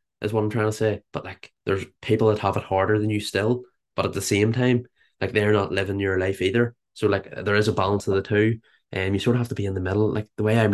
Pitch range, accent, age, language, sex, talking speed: 95-110 Hz, Irish, 20-39, English, male, 295 wpm